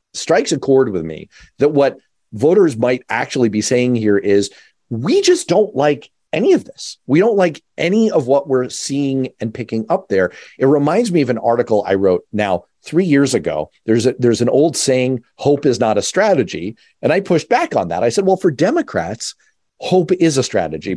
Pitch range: 115-145 Hz